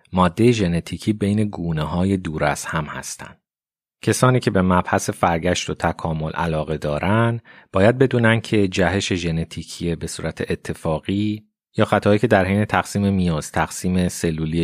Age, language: 30-49, Persian